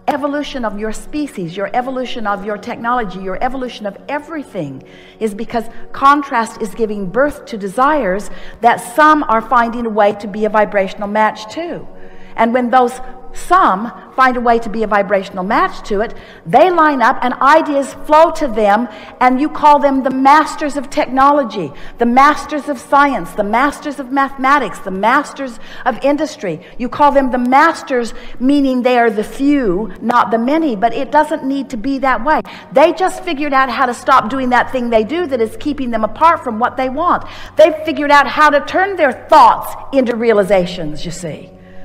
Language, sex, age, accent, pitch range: Japanese, female, 50-69, American, 215-285 Hz